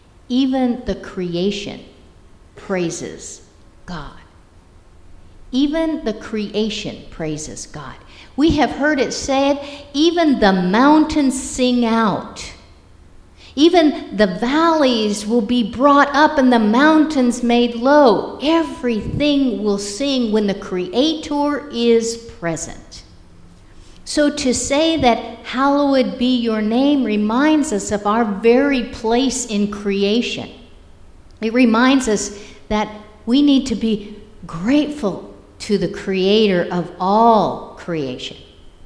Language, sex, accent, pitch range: English, female, American, 175-255 Hz